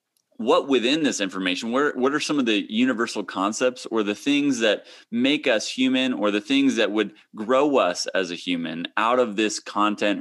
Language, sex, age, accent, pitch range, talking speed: English, male, 30-49, American, 100-125 Hz, 195 wpm